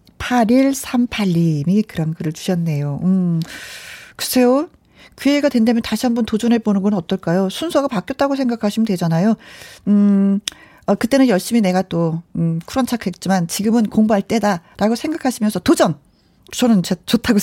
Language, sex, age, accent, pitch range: Korean, female, 40-59, native, 185-265 Hz